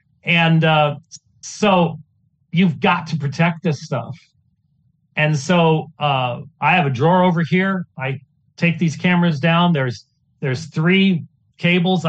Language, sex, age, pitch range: English, male, 40-59, 140-175 Hz